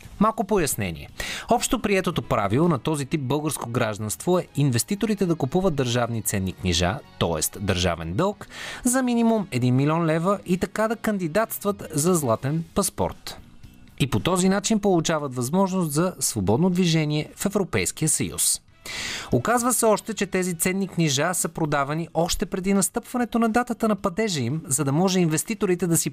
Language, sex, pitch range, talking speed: Bulgarian, male, 135-210 Hz, 155 wpm